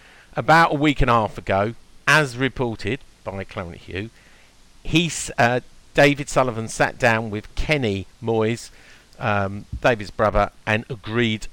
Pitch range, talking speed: 100-135 Hz, 130 wpm